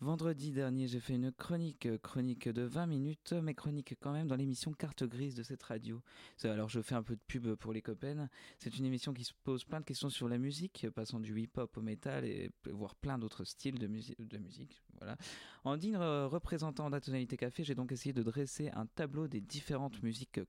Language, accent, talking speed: French, French, 215 wpm